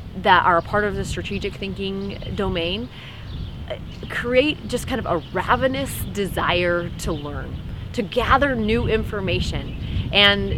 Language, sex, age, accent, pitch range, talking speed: English, female, 30-49, American, 175-235 Hz, 130 wpm